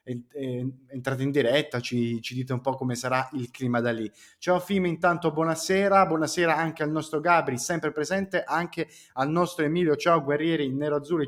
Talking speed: 185 wpm